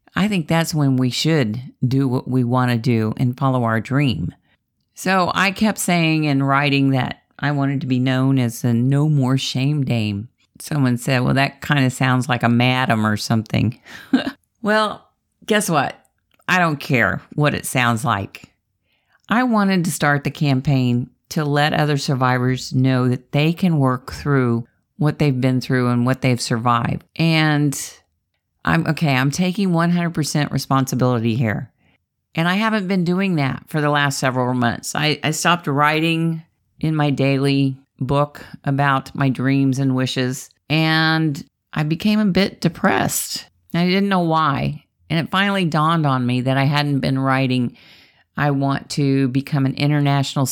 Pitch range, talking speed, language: 130-160 Hz, 165 wpm, English